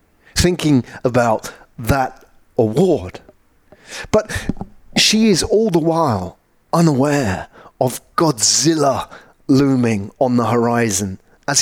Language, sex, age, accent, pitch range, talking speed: English, male, 30-49, British, 115-170 Hz, 95 wpm